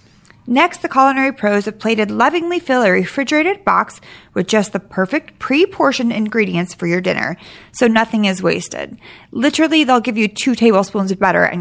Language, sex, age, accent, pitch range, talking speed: English, female, 30-49, American, 190-280 Hz, 170 wpm